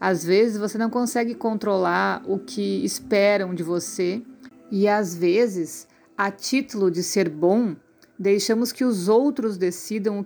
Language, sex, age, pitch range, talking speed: Portuguese, female, 50-69, 185-230 Hz, 145 wpm